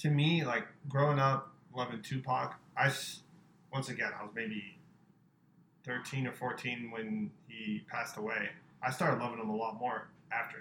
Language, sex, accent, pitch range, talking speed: English, male, American, 125-160 Hz, 160 wpm